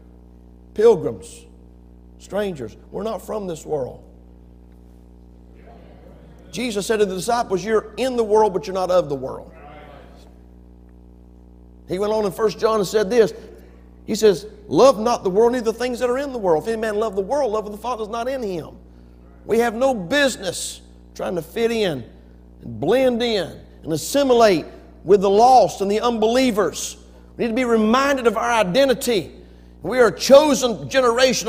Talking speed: 175 wpm